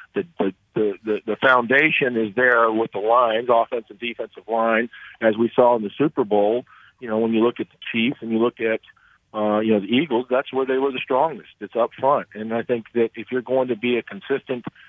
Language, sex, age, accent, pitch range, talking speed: English, male, 40-59, American, 100-115 Hz, 230 wpm